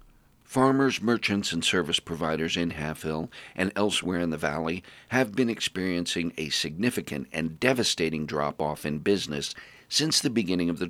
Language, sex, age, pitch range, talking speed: English, male, 50-69, 80-100 Hz, 155 wpm